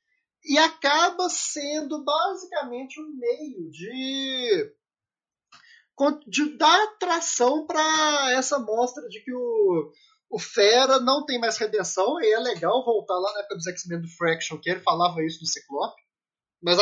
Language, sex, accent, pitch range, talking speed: Portuguese, male, Brazilian, 195-310 Hz, 145 wpm